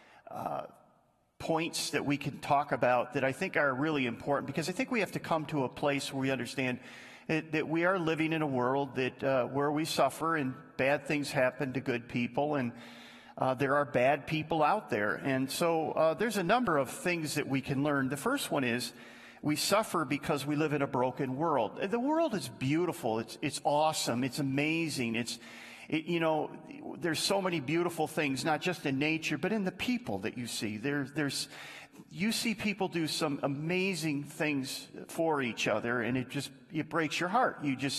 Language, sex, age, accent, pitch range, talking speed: English, male, 40-59, American, 135-165 Hz, 200 wpm